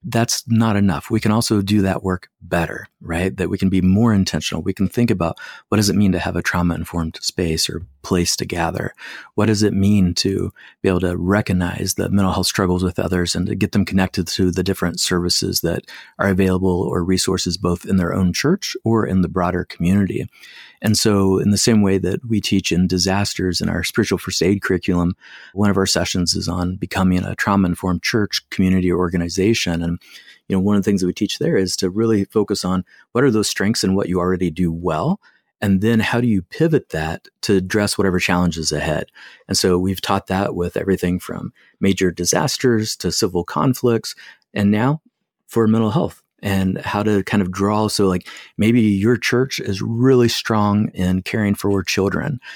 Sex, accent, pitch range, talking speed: male, American, 90-105 Hz, 205 wpm